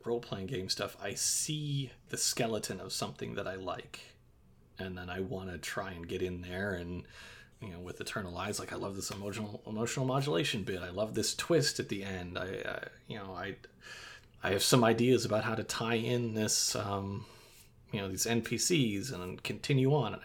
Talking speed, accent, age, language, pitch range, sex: 200 wpm, American, 30-49, English, 100-135 Hz, male